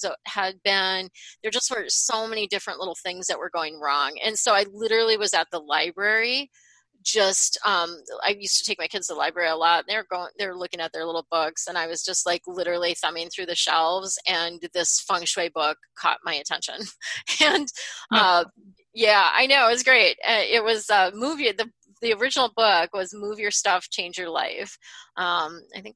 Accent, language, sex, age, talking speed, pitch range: American, English, female, 30-49, 205 wpm, 175-225 Hz